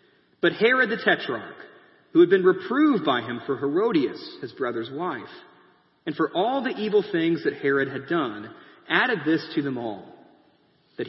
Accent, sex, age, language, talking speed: American, male, 30-49, English, 170 wpm